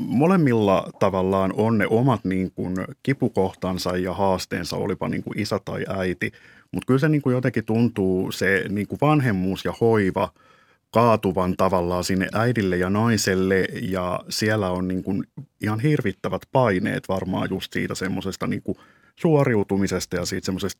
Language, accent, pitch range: Finnish, native, 95-110 Hz